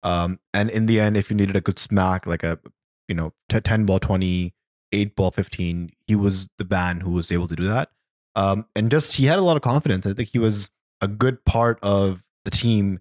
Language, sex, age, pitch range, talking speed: English, male, 20-39, 95-120 Hz, 230 wpm